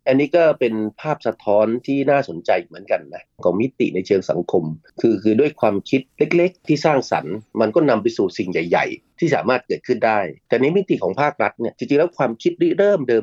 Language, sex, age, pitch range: Thai, male, 30-49, 110-150 Hz